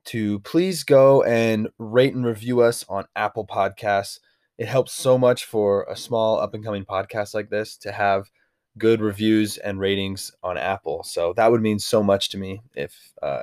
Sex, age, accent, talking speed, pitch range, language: male, 20-39, American, 180 wpm, 100-125 Hz, English